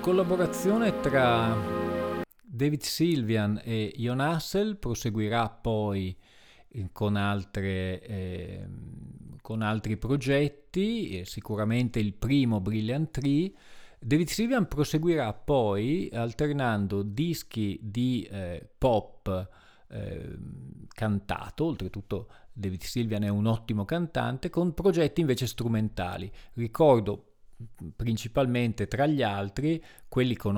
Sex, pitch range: male, 105-140 Hz